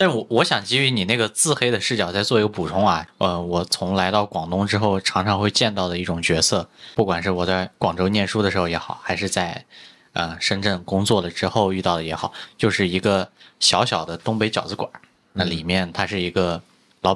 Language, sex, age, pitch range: Chinese, male, 20-39, 90-110 Hz